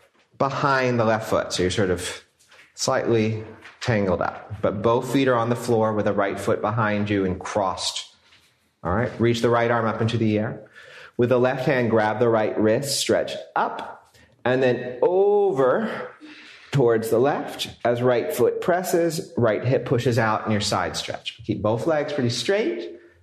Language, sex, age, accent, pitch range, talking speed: English, male, 30-49, American, 110-135 Hz, 180 wpm